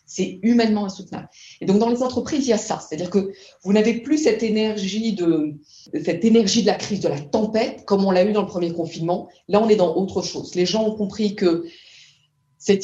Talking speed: 225 wpm